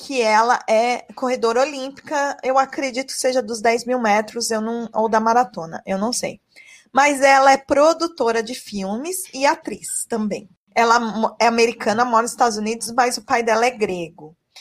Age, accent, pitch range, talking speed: 20-39, Brazilian, 230-280 Hz, 170 wpm